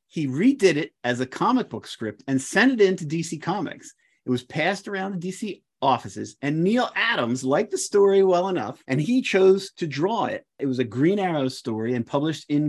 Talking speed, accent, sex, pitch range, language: 210 wpm, American, male, 125-170 Hz, English